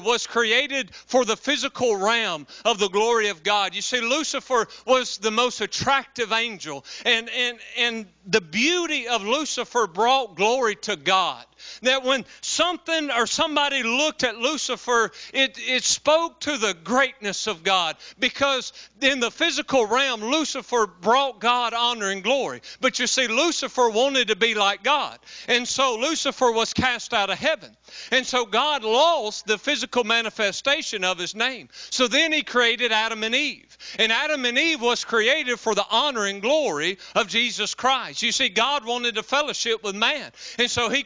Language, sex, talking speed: English, male, 170 wpm